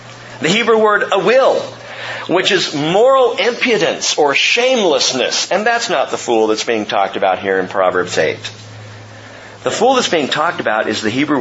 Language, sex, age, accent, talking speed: English, male, 40-59, American, 175 wpm